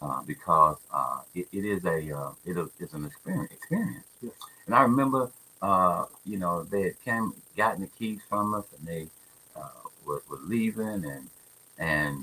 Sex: male